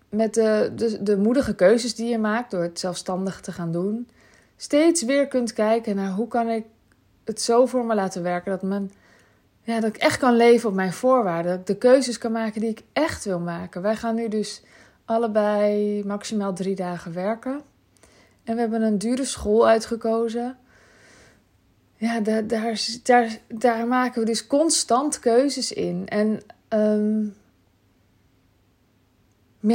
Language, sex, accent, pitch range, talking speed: Dutch, female, Dutch, 195-240 Hz, 155 wpm